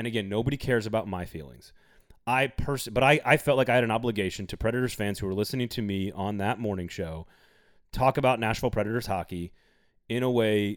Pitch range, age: 100-125 Hz, 30-49